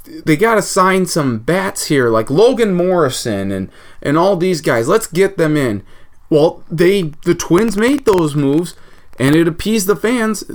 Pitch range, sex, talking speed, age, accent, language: 130-180 Hz, male, 170 wpm, 30-49, American, English